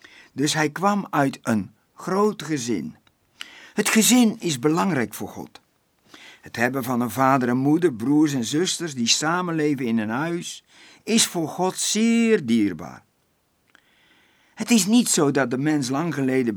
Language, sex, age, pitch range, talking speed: Dutch, male, 60-79, 125-185 Hz, 150 wpm